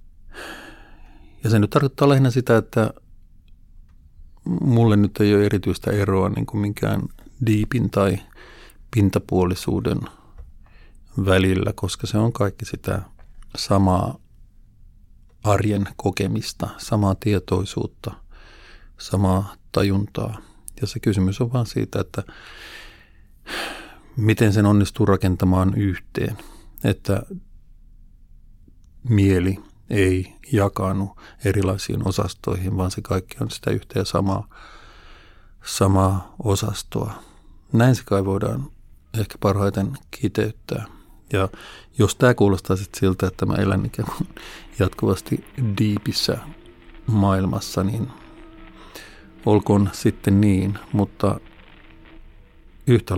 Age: 50-69